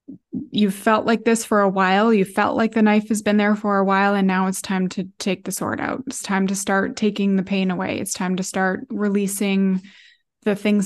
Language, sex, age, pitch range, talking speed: English, female, 20-39, 195-220 Hz, 230 wpm